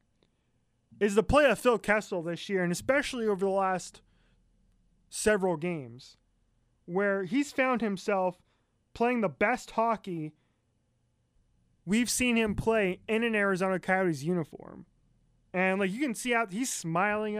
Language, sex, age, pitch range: English, male, 20-39, 170-210 Hz